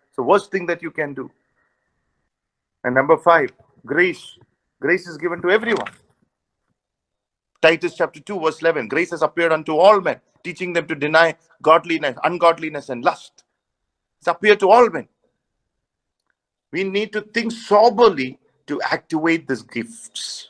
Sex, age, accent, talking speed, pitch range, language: male, 50-69, Indian, 145 wpm, 165-215 Hz, English